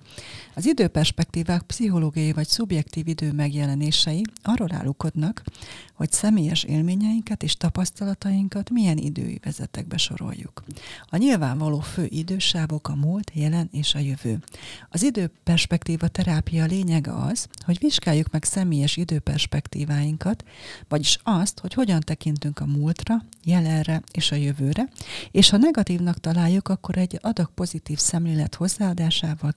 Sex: female